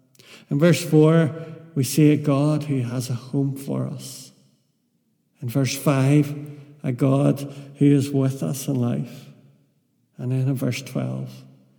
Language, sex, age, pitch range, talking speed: English, male, 70-89, 130-145 Hz, 150 wpm